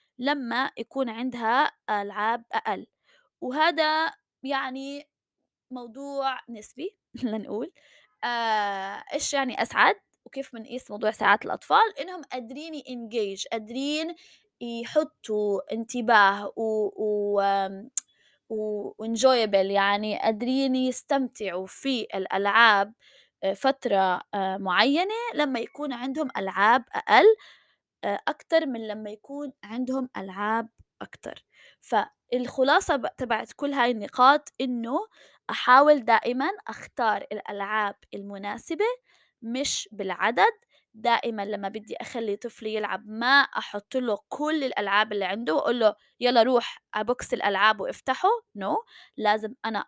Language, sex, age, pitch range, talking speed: Arabic, female, 20-39, 210-275 Hz, 100 wpm